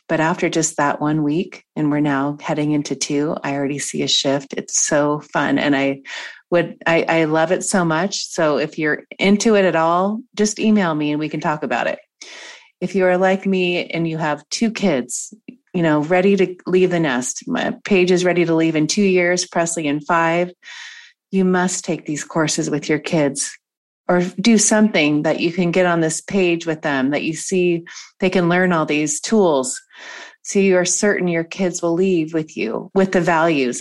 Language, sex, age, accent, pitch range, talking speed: English, female, 30-49, American, 150-185 Hz, 205 wpm